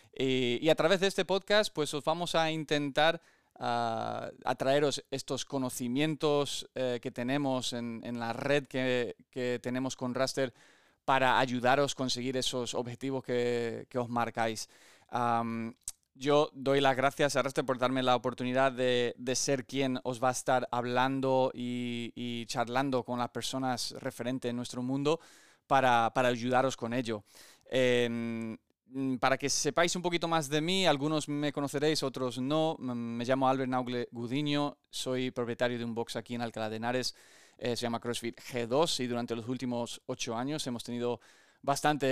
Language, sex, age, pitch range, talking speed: Spanish, male, 20-39, 120-140 Hz, 160 wpm